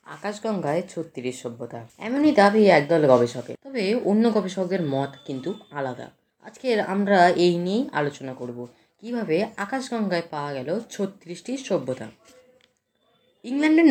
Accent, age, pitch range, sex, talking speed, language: native, 20-39, 165-225 Hz, female, 110 wpm, Bengali